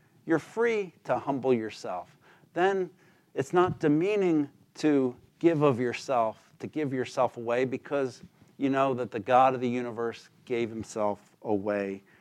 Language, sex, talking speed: English, male, 145 wpm